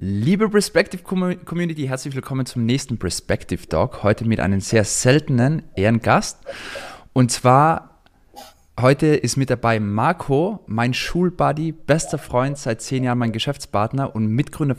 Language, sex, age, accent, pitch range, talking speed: German, male, 20-39, German, 110-145 Hz, 135 wpm